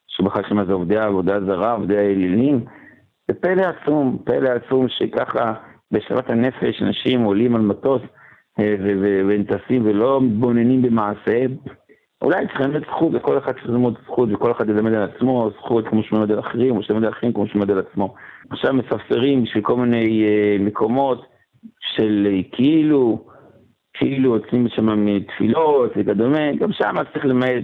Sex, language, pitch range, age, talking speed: male, Hebrew, 105-130 Hz, 60-79, 145 wpm